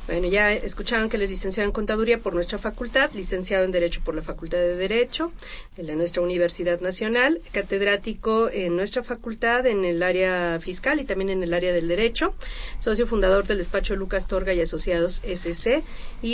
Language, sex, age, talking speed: Spanish, female, 40-59, 175 wpm